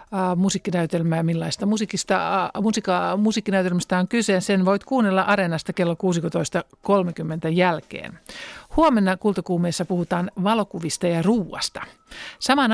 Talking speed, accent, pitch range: 110 wpm, native, 170-200 Hz